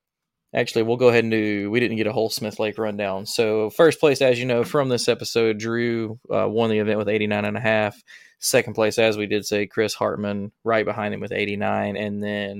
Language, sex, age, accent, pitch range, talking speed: English, male, 20-39, American, 105-125 Hz, 230 wpm